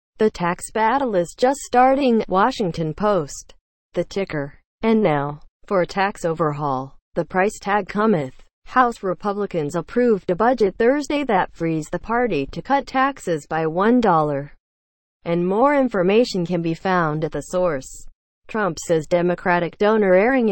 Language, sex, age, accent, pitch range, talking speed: English, female, 30-49, American, 160-220 Hz, 145 wpm